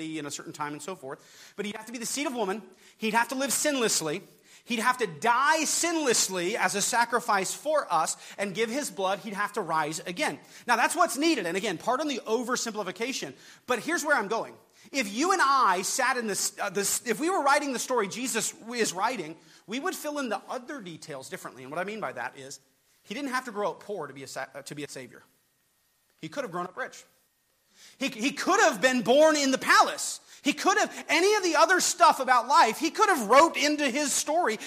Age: 30-49